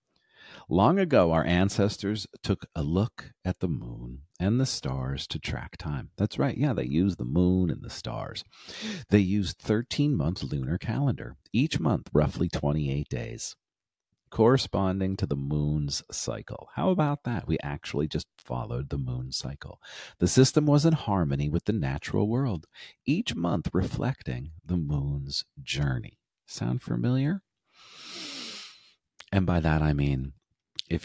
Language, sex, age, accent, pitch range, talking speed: English, male, 40-59, American, 75-115 Hz, 145 wpm